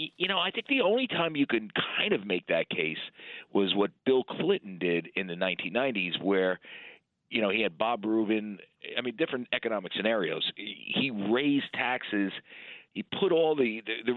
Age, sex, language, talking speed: 40-59, male, English, 180 wpm